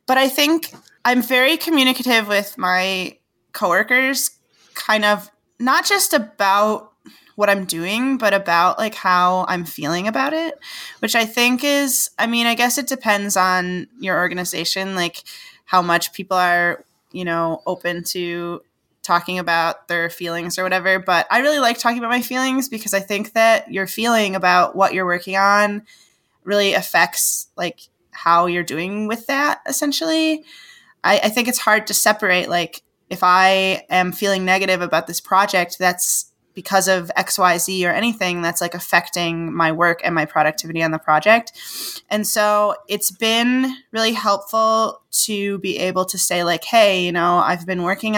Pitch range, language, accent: 180-225 Hz, English, American